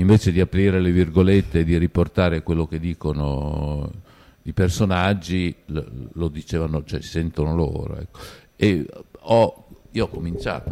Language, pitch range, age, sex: Italian, 80-100 Hz, 50-69, male